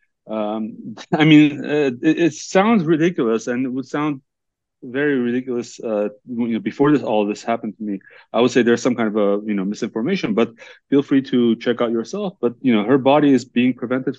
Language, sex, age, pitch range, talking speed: English, male, 30-49, 110-130 Hz, 215 wpm